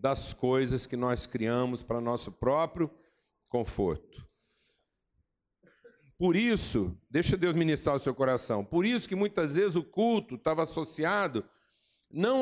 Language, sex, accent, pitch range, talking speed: Portuguese, male, Brazilian, 140-180 Hz, 130 wpm